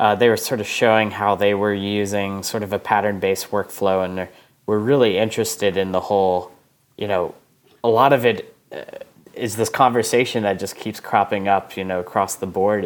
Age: 10-29